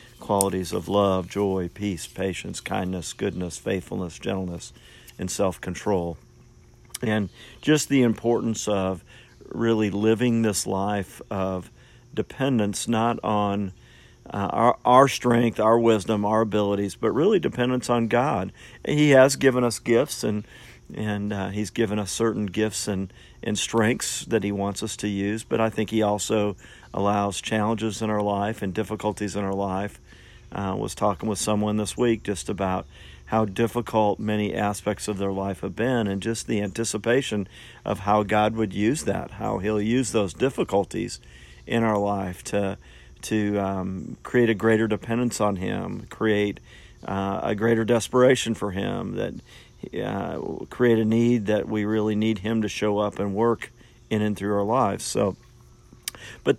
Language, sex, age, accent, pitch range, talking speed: English, male, 50-69, American, 100-115 Hz, 160 wpm